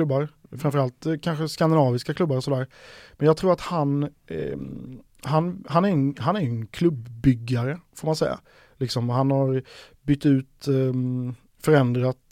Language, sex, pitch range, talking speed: Swedish, male, 125-150 Hz, 150 wpm